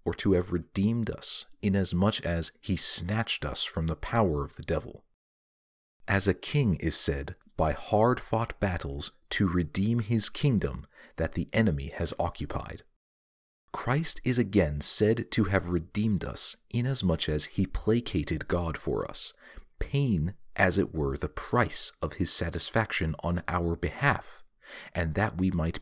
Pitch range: 80-105 Hz